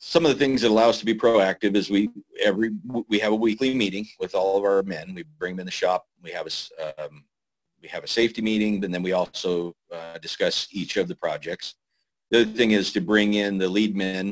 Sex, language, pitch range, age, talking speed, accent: male, English, 90-110 Hz, 50-69, 245 wpm, American